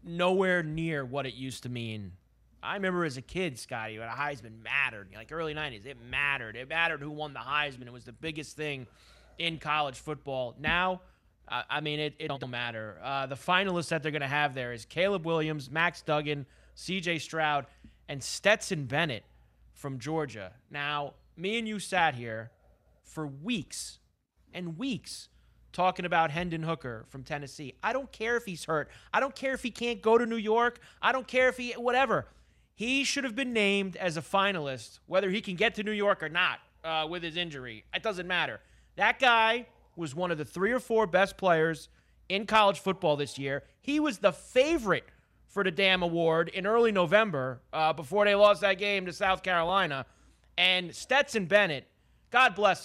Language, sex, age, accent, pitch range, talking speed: English, male, 30-49, American, 140-195 Hz, 190 wpm